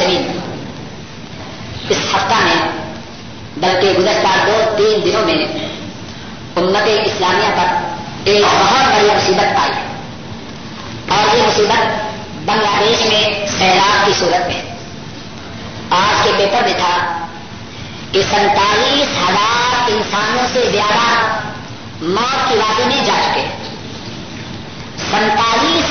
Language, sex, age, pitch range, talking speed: Urdu, male, 50-69, 205-270 Hz, 105 wpm